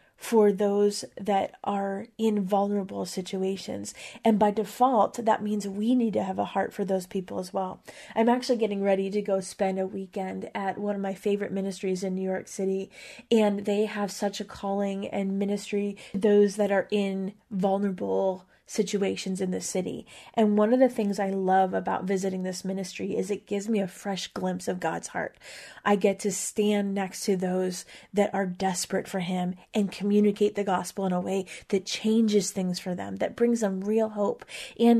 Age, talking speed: 30-49, 190 wpm